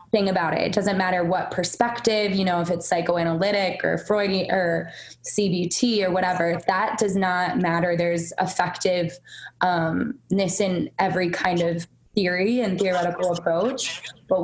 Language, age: English, 20-39